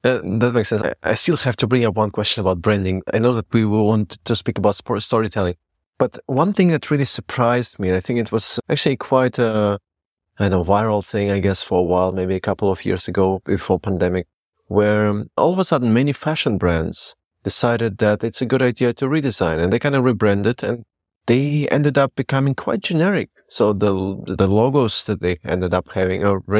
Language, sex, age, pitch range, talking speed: English, male, 30-49, 95-120 Hz, 215 wpm